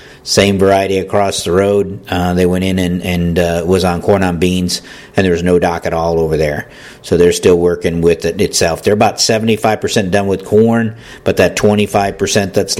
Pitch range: 85-100 Hz